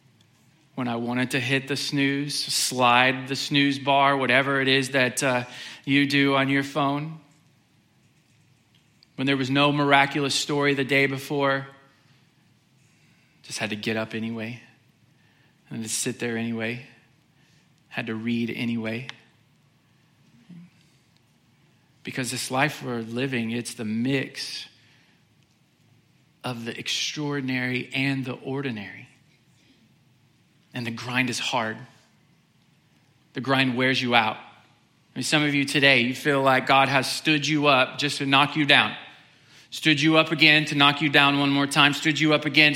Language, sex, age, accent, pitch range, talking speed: English, male, 40-59, American, 130-150 Hz, 145 wpm